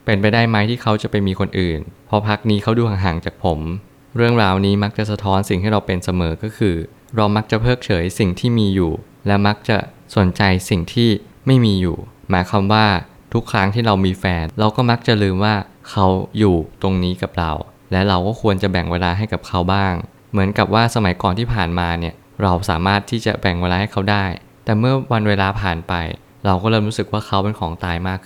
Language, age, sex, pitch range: Thai, 20-39, male, 90-110 Hz